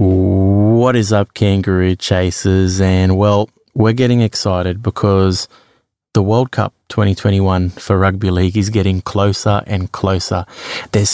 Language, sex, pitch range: English, male, 95-110 Hz